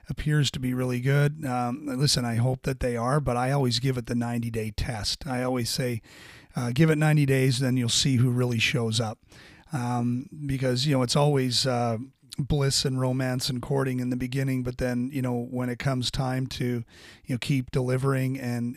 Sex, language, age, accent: male, English, 40-59, American